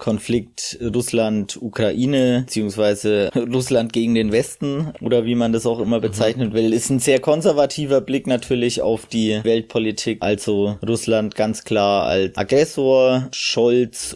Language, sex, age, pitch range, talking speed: German, male, 20-39, 105-125 Hz, 130 wpm